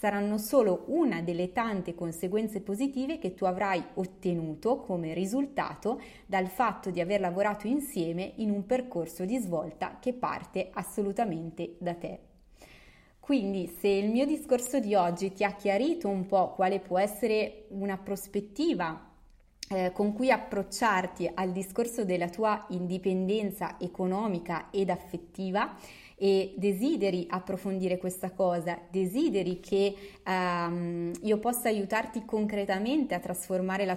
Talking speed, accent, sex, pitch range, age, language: 125 wpm, native, female, 180-215 Hz, 20-39, Italian